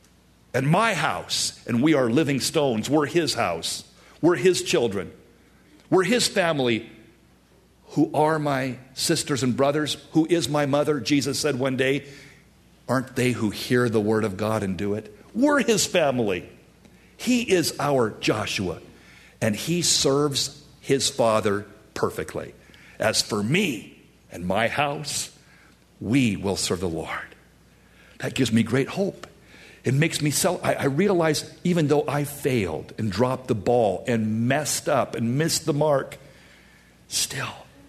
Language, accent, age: English, American, 50-69